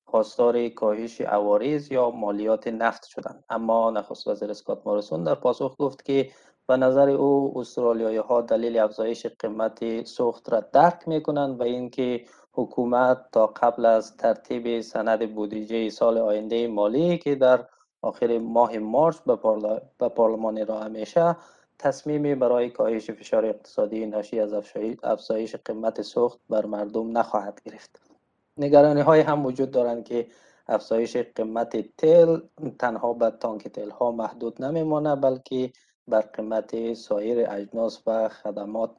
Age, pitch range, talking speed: 20-39, 110-135 Hz, 135 wpm